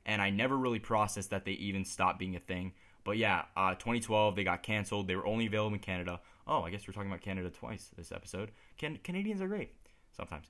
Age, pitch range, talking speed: 10-29, 95-120 Hz, 230 wpm